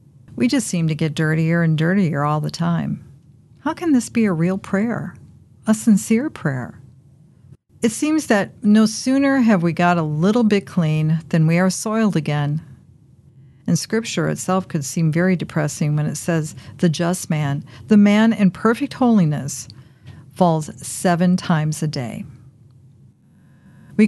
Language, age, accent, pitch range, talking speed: English, 50-69, American, 140-195 Hz, 155 wpm